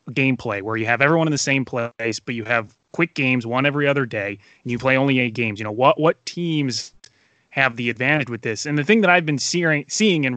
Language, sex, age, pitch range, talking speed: English, male, 20-39, 120-155 Hz, 250 wpm